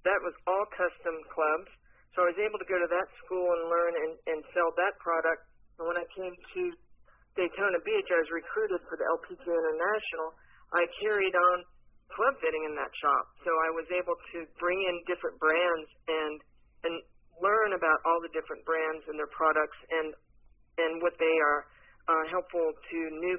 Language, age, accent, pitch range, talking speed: English, 50-69, American, 160-195 Hz, 185 wpm